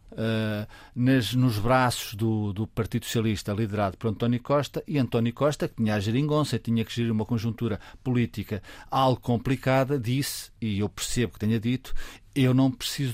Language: Portuguese